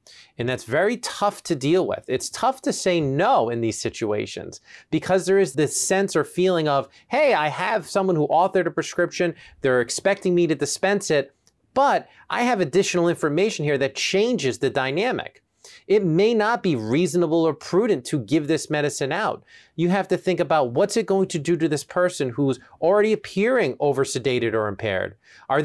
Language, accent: English, American